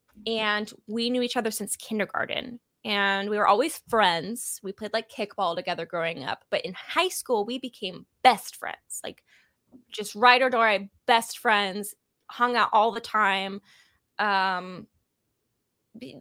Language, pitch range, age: English, 195-255 Hz, 20-39